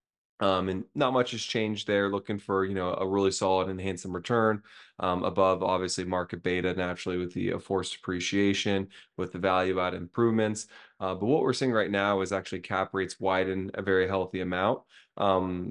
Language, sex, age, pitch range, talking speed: English, male, 20-39, 90-100 Hz, 190 wpm